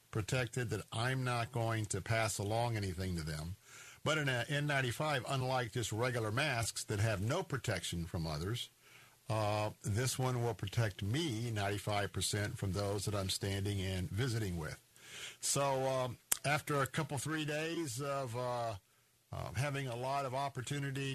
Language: English